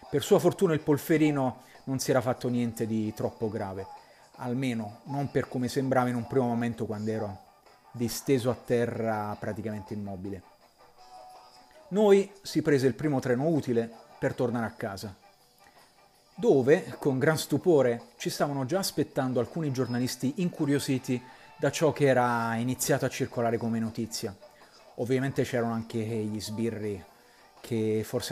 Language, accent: Italian, native